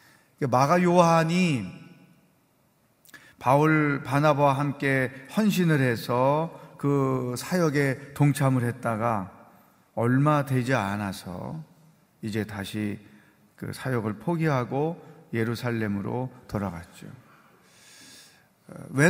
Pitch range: 115-155 Hz